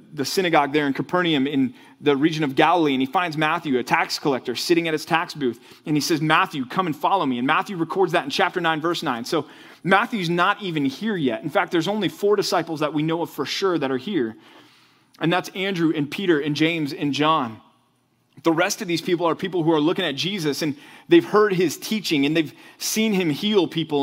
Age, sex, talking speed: 30-49, male, 230 wpm